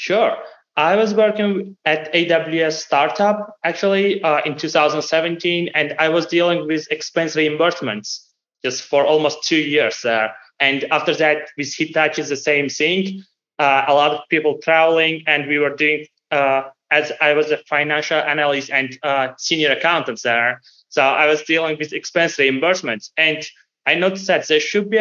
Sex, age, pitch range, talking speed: male, 20-39, 145-165 Hz, 165 wpm